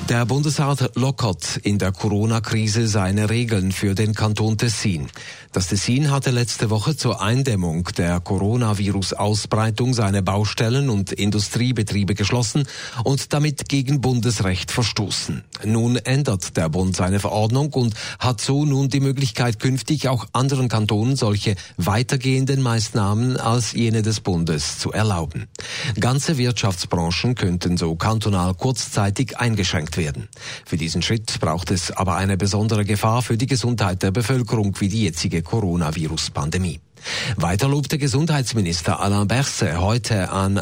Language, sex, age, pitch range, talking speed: German, male, 40-59, 95-125 Hz, 130 wpm